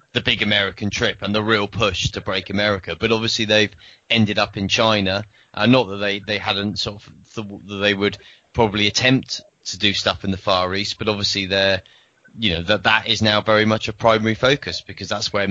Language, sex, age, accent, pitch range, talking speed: English, male, 30-49, British, 100-115 Hz, 220 wpm